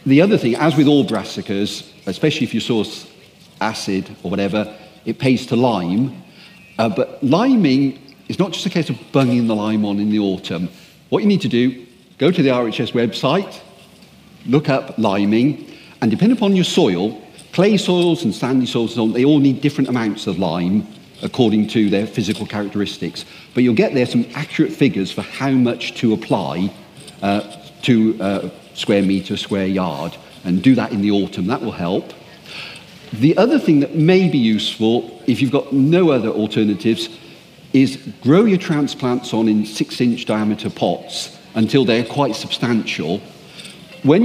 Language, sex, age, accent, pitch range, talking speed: English, male, 40-59, British, 105-140 Hz, 170 wpm